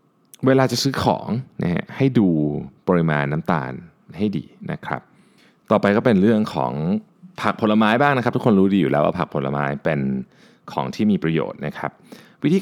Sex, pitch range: male, 80-125 Hz